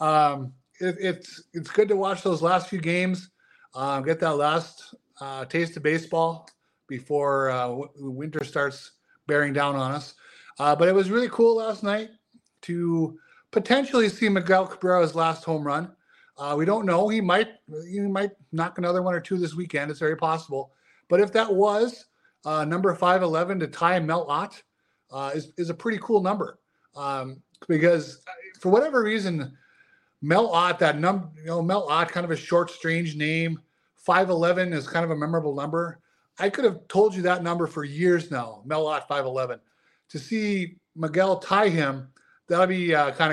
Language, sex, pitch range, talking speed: English, male, 145-185 Hz, 180 wpm